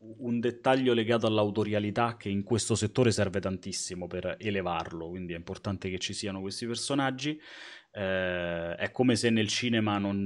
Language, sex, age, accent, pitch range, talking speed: Italian, male, 30-49, native, 100-145 Hz, 160 wpm